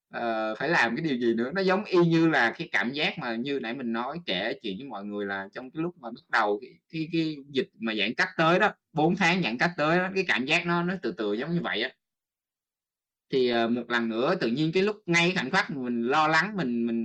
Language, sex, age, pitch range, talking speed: Vietnamese, male, 20-39, 120-180 Hz, 265 wpm